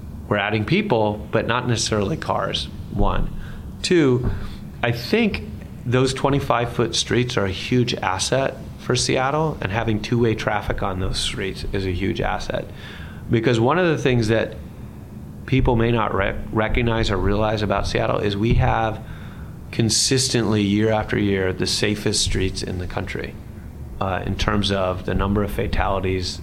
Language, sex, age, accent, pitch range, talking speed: English, male, 30-49, American, 95-120 Hz, 150 wpm